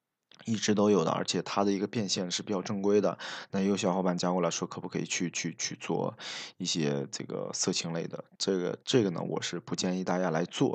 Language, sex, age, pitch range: Chinese, male, 20-39, 90-100 Hz